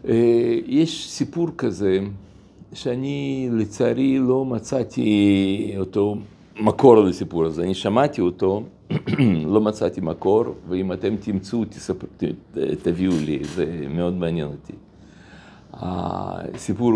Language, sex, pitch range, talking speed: Hebrew, male, 95-125 Hz, 95 wpm